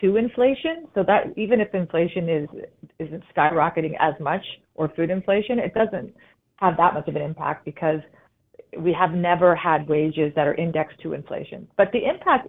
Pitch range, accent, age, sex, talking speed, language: 170-215 Hz, American, 40-59, female, 180 wpm, English